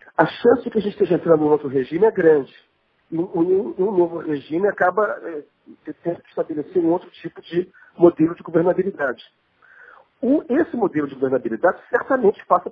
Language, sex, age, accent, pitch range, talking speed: Portuguese, male, 40-59, Brazilian, 150-210 Hz, 160 wpm